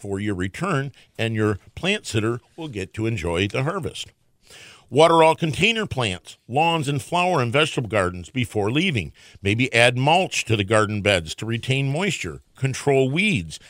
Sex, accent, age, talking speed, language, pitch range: male, American, 50-69, 160 wpm, English, 105-150 Hz